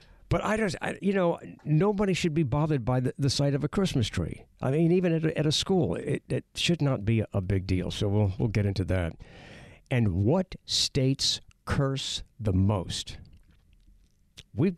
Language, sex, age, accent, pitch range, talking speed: English, male, 60-79, American, 105-165 Hz, 190 wpm